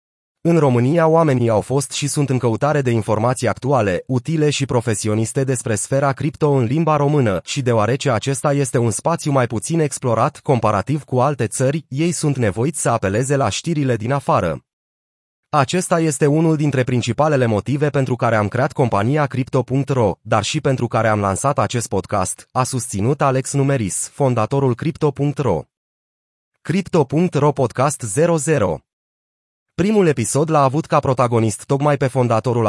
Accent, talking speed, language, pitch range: native, 150 wpm, Romanian, 115-145 Hz